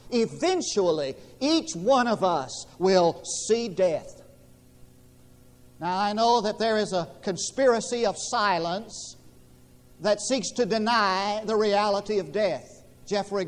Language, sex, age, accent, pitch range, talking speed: English, male, 50-69, American, 195-255 Hz, 120 wpm